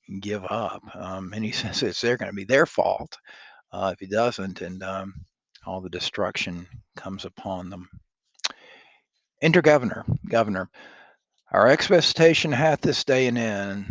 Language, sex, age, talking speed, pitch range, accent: English, male, 50-69, 150 wpm, 100-130 Hz, American